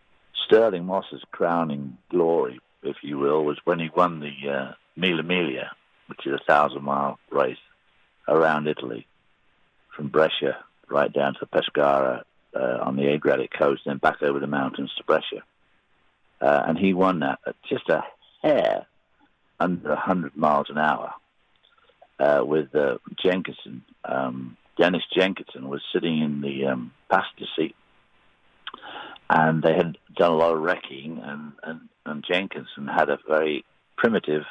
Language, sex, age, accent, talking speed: English, male, 60-79, British, 150 wpm